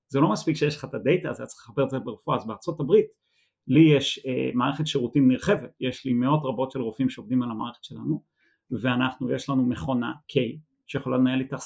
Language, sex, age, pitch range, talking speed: Hebrew, male, 30-49, 125-155 Hz, 210 wpm